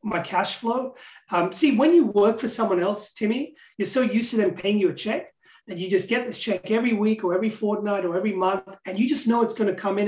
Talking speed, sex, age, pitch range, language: 260 wpm, male, 30-49, 185-230 Hz, English